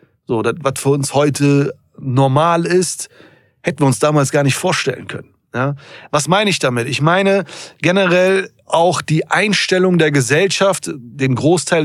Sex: male